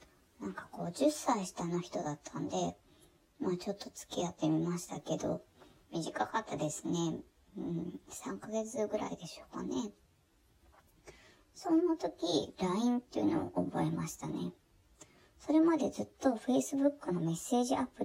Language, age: Japanese, 20-39